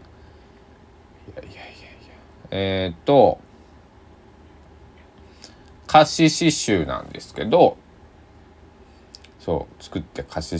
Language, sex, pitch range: Japanese, male, 80-125 Hz